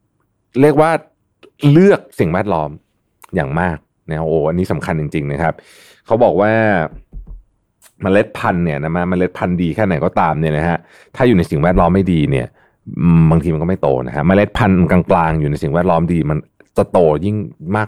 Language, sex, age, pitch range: Thai, male, 30-49, 85-115 Hz